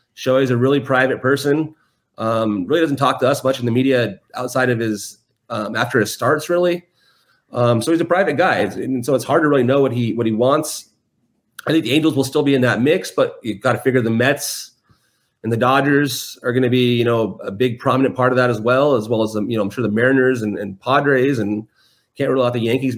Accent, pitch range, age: American, 110-135 Hz, 30-49